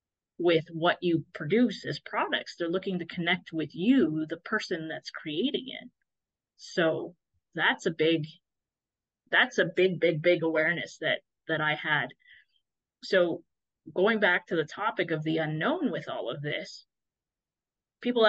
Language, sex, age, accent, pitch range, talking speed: English, female, 30-49, American, 155-190 Hz, 150 wpm